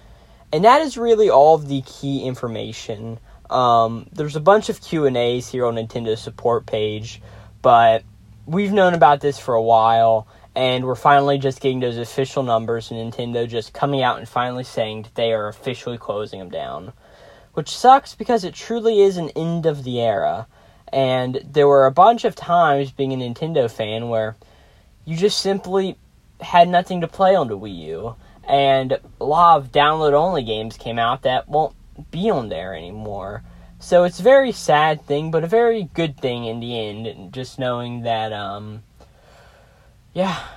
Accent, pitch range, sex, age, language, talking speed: American, 115-160 Hz, male, 10-29, English, 175 wpm